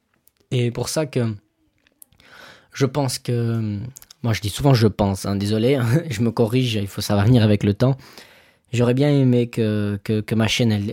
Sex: male